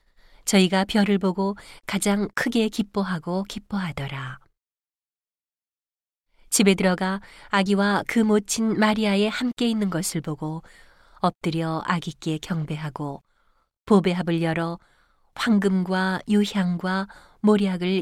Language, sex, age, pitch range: Korean, female, 40-59, 165-205 Hz